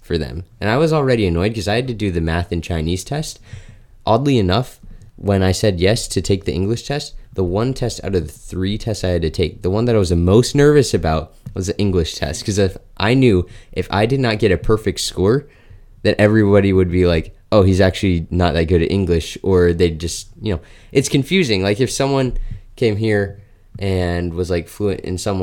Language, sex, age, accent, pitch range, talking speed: English, male, 20-39, American, 90-110 Hz, 225 wpm